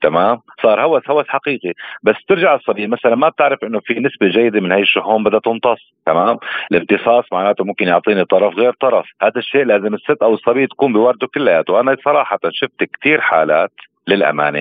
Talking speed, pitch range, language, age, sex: 175 wpm, 85-110 Hz, Arabic, 40-59, male